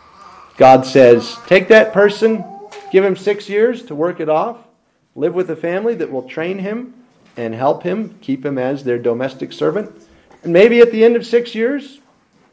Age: 40-59